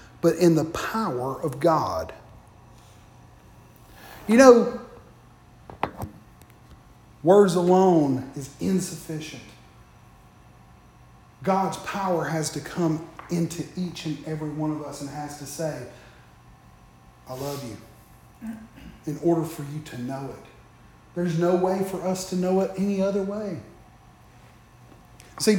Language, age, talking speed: English, 40-59, 115 wpm